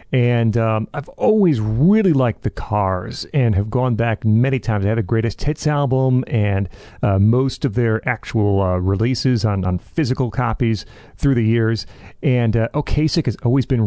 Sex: male